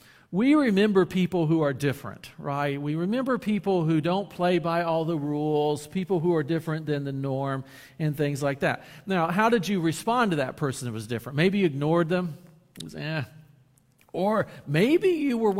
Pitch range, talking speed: 140-195 Hz, 185 wpm